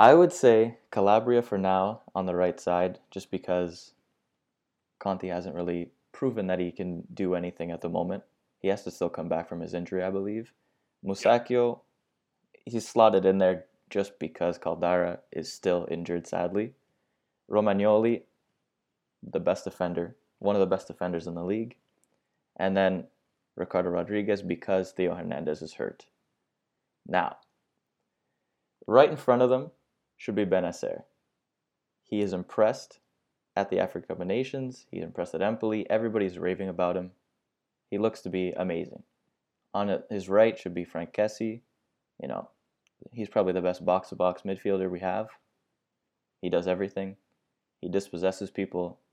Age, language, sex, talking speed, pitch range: 20-39, English, male, 145 wpm, 90-105 Hz